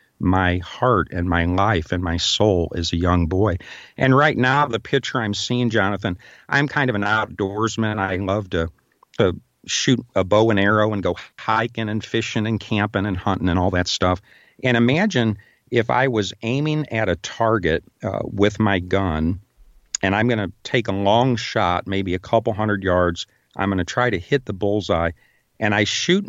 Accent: American